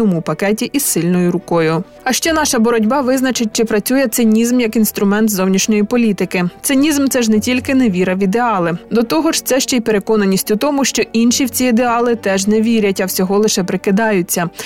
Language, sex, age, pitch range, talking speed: Ukrainian, female, 20-39, 195-245 Hz, 190 wpm